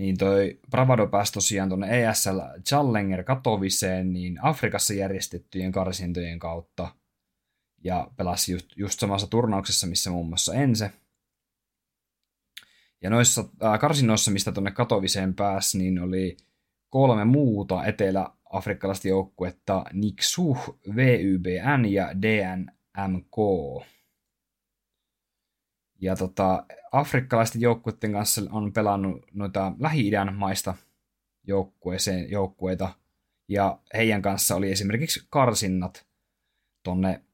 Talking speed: 95 wpm